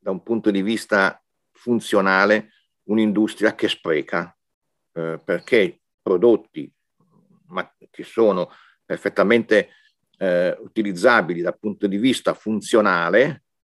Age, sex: 50-69, male